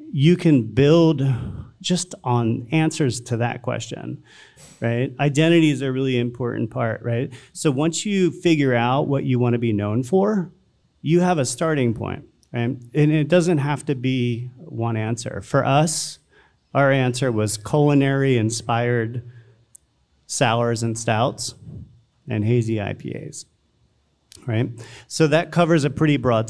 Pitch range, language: 115-155 Hz, English